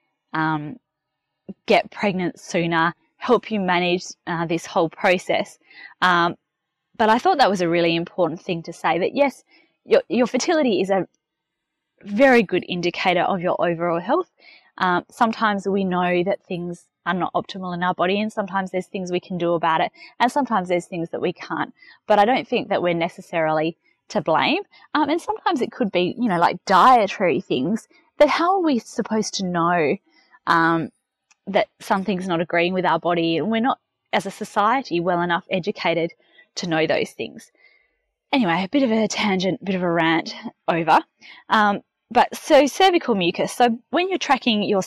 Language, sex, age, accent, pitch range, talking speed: English, female, 20-39, Australian, 175-255 Hz, 180 wpm